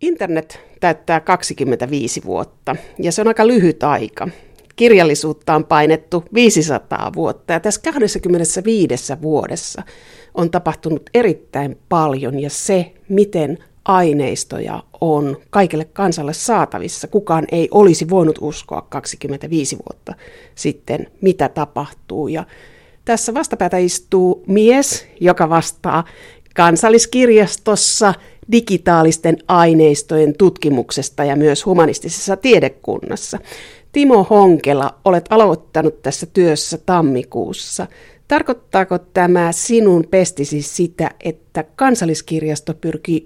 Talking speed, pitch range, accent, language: 95 wpm, 155-195 Hz, native, Finnish